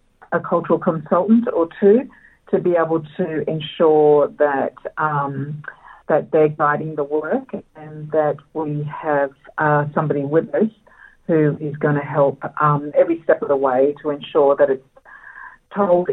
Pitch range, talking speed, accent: 150-190 Hz, 155 wpm, Australian